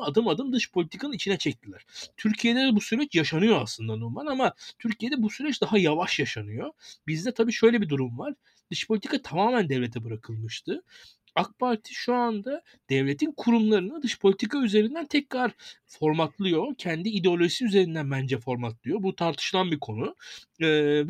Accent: native